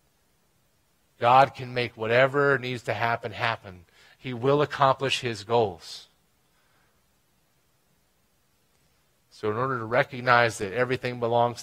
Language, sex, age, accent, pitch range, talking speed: English, male, 40-59, American, 115-185 Hz, 110 wpm